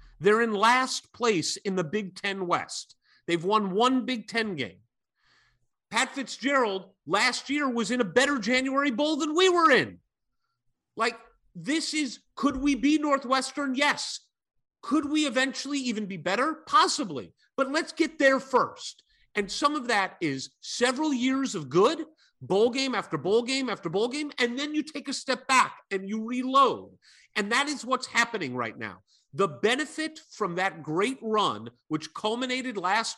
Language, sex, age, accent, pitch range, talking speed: English, male, 40-59, American, 210-285 Hz, 165 wpm